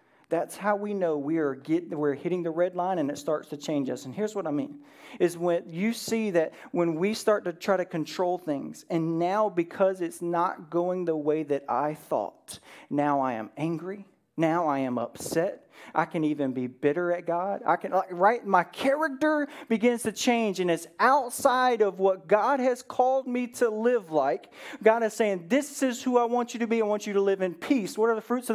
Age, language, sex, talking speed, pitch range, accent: 40-59, English, male, 220 wpm, 170-235 Hz, American